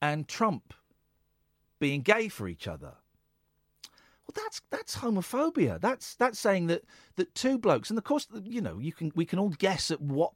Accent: British